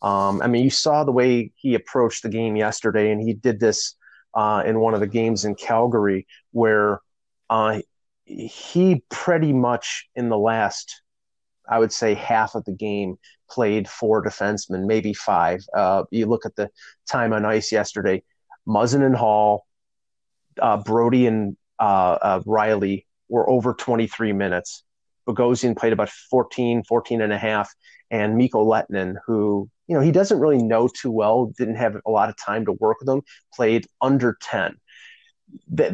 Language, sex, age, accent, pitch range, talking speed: English, male, 30-49, American, 105-120 Hz, 165 wpm